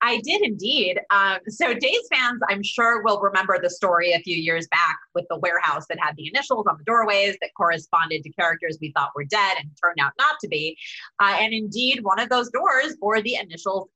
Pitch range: 175-245 Hz